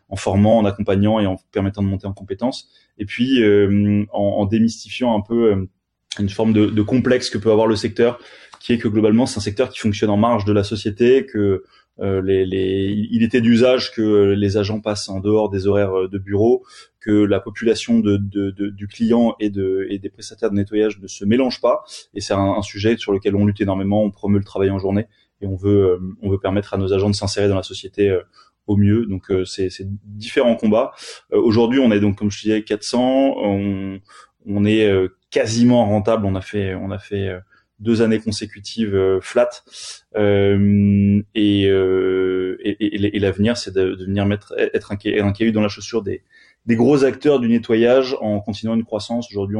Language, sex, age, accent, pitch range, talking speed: French, male, 20-39, French, 100-115 Hz, 215 wpm